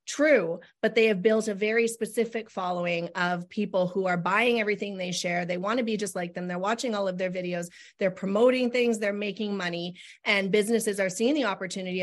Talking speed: 210 wpm